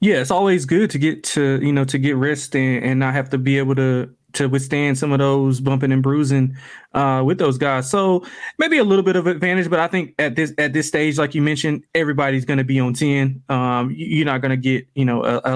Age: 20-39